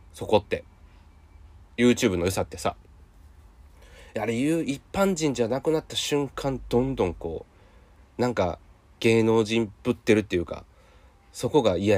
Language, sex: Japanese, male